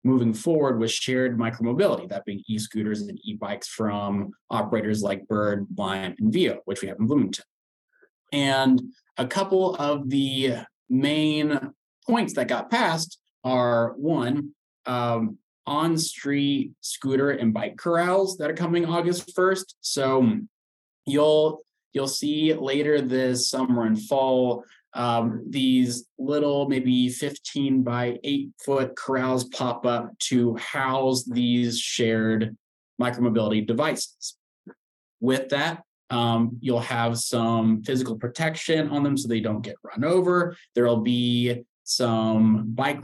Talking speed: 125 wpm